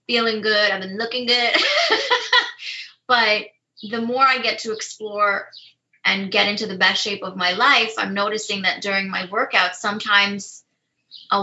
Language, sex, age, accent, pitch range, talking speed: English, female, 20-39, American, 190-225 Hz, 160 wpm